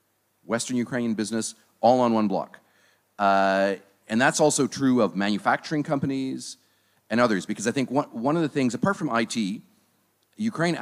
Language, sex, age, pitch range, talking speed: Polish, male, 40-59, 100-125 Hz, 160 wpm